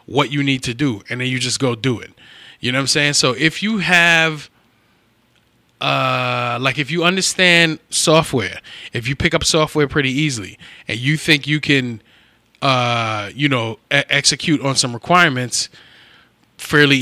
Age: 20-39